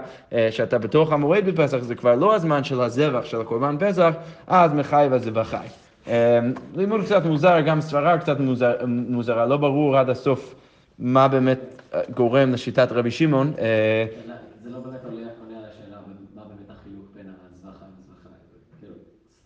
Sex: male